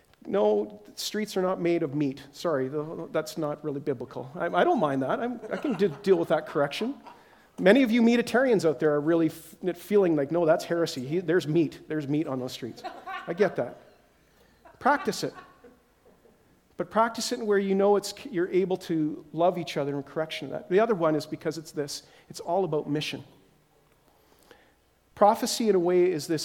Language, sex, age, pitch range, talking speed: English, male, 40-59, 145-195 Hz, 195 wpm